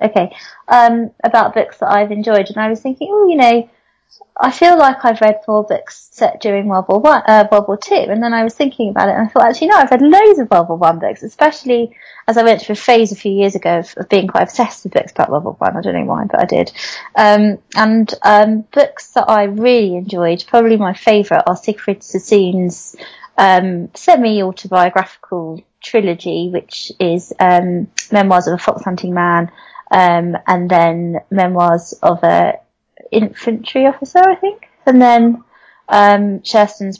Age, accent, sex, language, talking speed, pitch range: 30-49, British, female, English, 195 wpm, 180-230 Hz